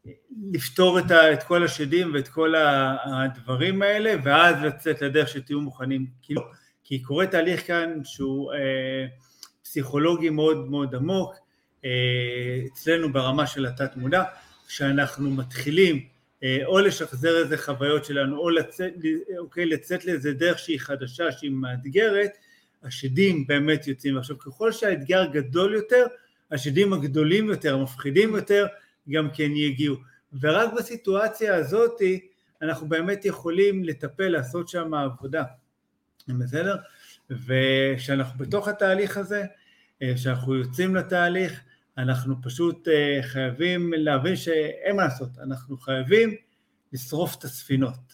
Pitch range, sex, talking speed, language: 135-185 Hz, male, 115 wpm, Hebrew